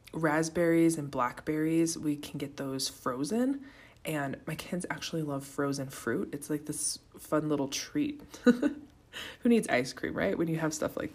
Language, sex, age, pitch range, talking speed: English, female, 20-39, 140-175 Hz, 165 wpm